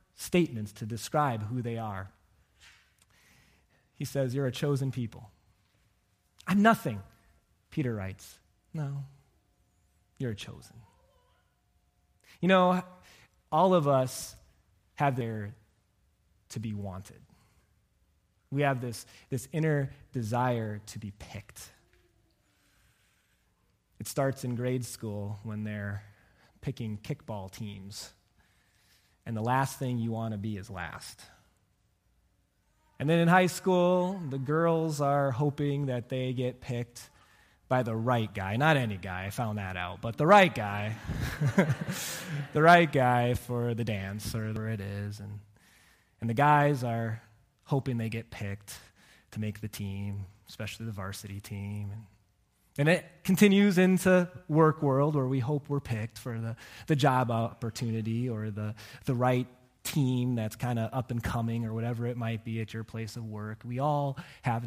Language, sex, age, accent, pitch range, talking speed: English, male, 20-39, American, 105-135 Hz, 145 wpm